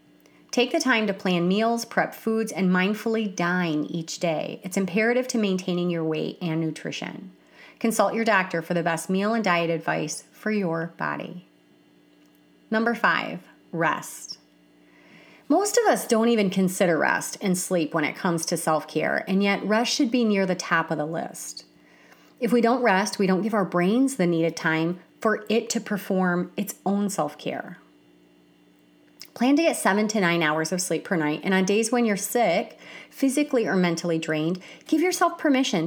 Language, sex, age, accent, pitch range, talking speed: English, female, 30-49, American, 160-225 Hz, 175 wpm